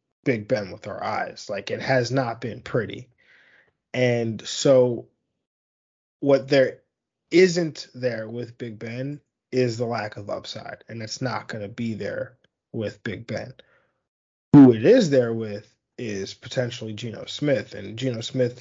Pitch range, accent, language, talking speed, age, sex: 110-130 Hz, American, English, 150 wpm, 20-39, male